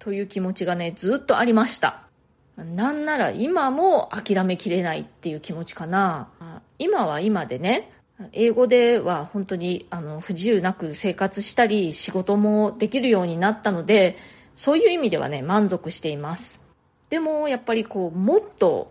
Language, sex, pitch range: Japanese, female, 180-245 Hz